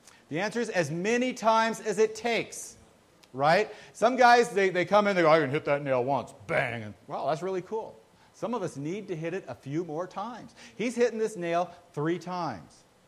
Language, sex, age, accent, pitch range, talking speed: English, male, 40-59, American, 155-220 Hz, 215 wpm